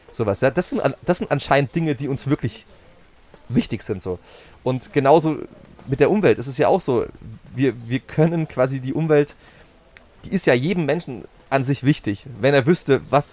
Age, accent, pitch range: 30-49, German, 115-150 Hz